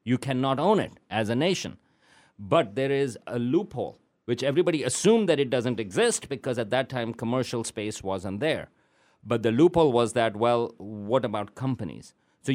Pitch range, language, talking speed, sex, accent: 105-140 Hz, English, 175 wpm, male, Indian